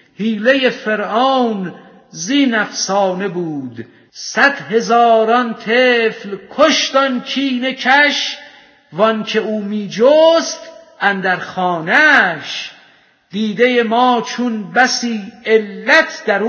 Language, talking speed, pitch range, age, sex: Persian, 85 wpm, 205-255 Hz, 50-69, female